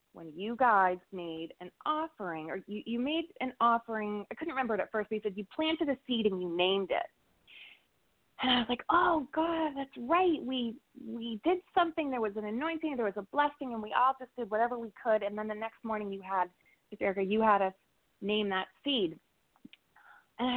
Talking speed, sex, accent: 215 wpm, female, American